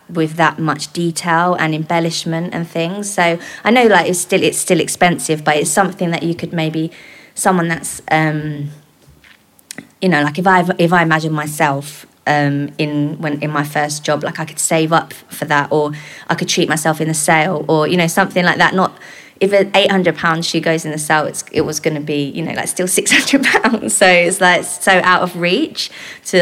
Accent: British